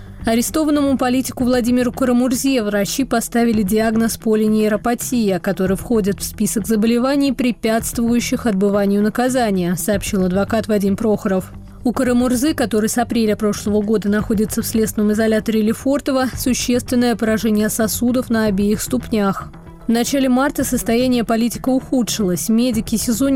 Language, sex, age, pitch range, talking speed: Russian, female, 20-39, 210-245 Hz, 120 wpm